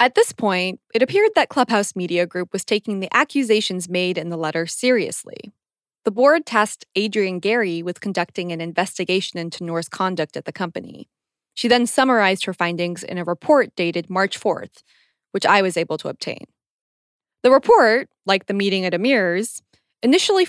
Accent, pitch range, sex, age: American, 175-240 Hz, female, 20-39